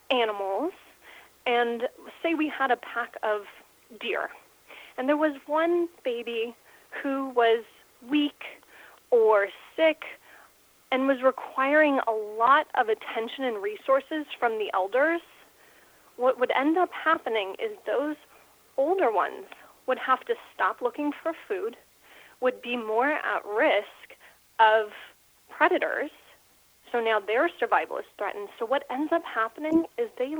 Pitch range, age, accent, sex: 225-305 Hz, 30-49, American, female